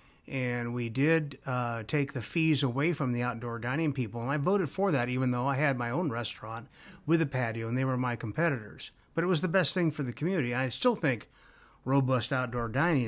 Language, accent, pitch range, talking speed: English, American, 115-145 Hz, 220 wpm